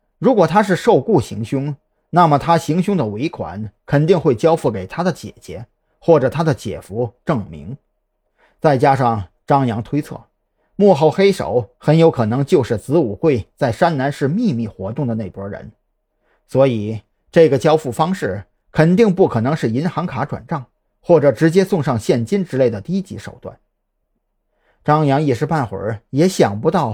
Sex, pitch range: male, 115-165 Hz